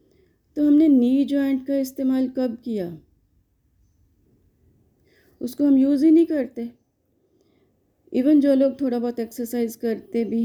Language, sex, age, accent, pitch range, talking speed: Hindi, female, 30-49, native, 215-280 Hz, 125 wpm